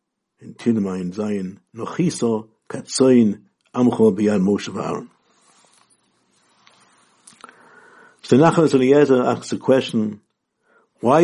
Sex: male